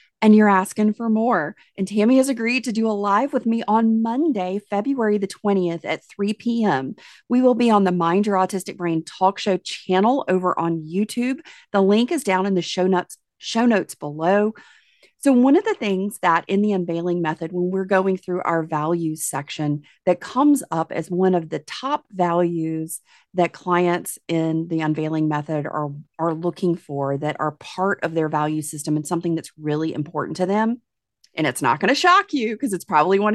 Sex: female